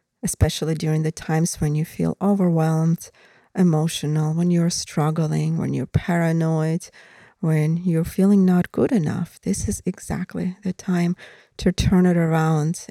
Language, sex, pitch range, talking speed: English, female, 165-190 Hz, 140 wpm